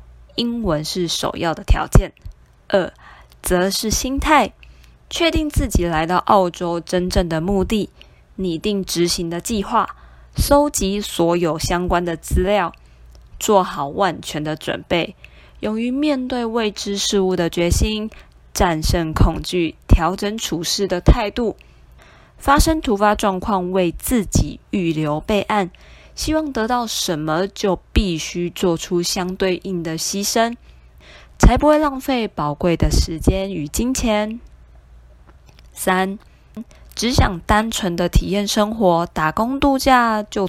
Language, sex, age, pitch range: Chinese, female, 20-39, 165-225 Hz